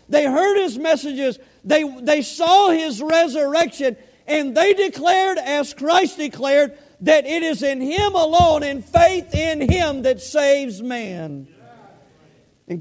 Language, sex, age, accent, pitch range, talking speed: English, male, 50-69, American, 275-335 Hz, 135 wpm